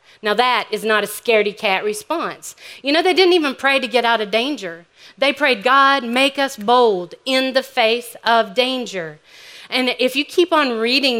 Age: 40-59